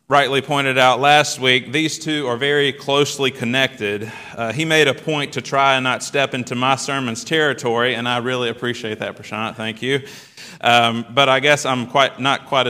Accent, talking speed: American, 195 wpm